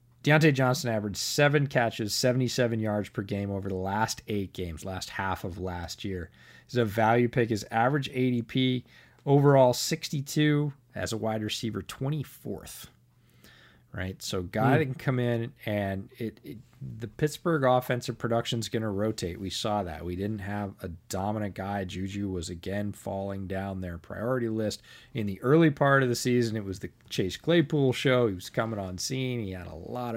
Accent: American